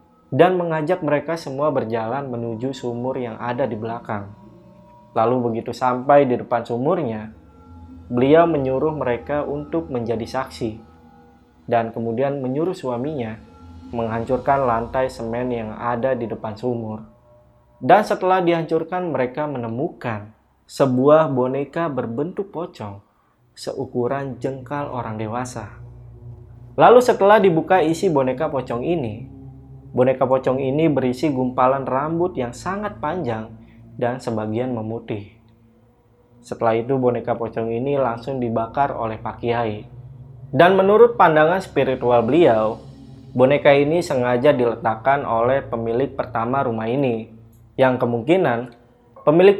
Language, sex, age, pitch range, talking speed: Indonesian, male, 20-39, 115-140 Hz, 115 wpm